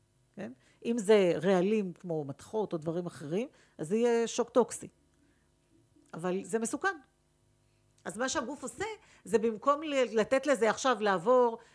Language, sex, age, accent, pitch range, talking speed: Hebrew, female, 50-69, native, 185-255 Hz, 140 wpm